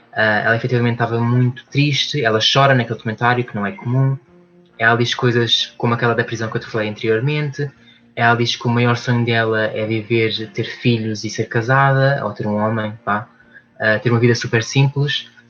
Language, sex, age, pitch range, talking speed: Portuguese, male, 20-39, 115-135 Hz, 195 wpm